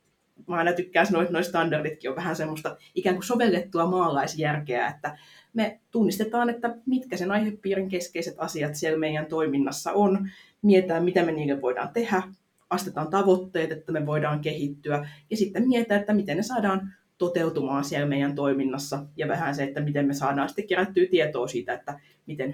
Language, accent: Finnish, native